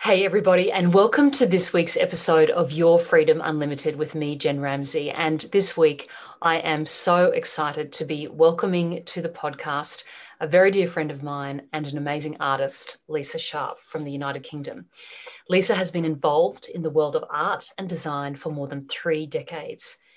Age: 30-49